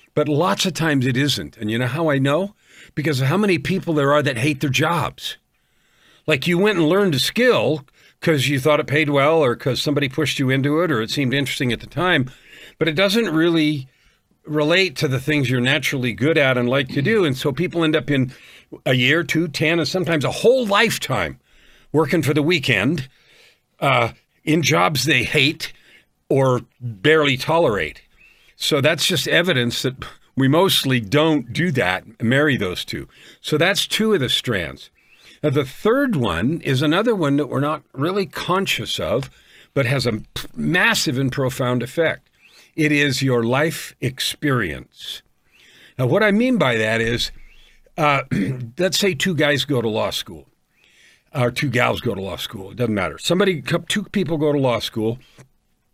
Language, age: English, 50-69